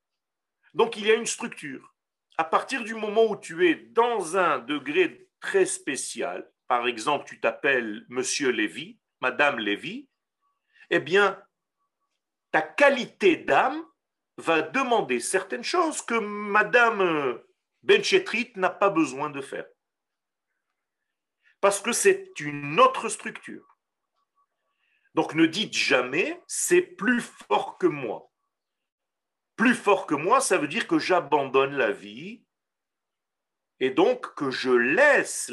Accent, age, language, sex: French, 50-69, French, male